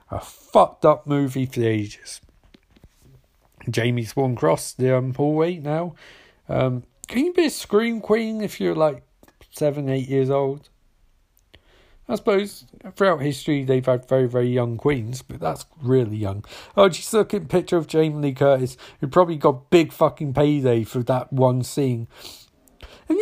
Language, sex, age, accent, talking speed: English, male, 40-59, British, 165 wpm